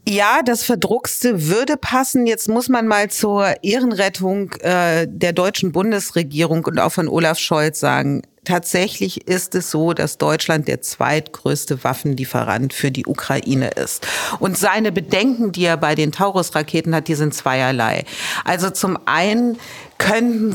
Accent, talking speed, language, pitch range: German, 145 wpm, German, 155-205 Hz